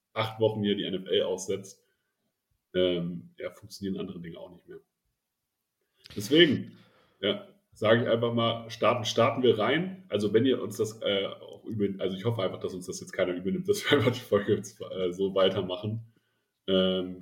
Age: 30-49